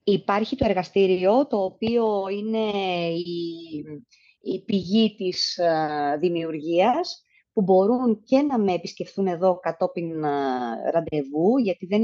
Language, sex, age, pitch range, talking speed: Greek, female, 30-49, 175-225 Hz, 120 wpm